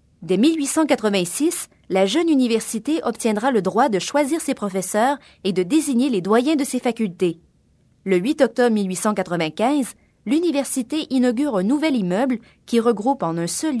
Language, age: French, 20-39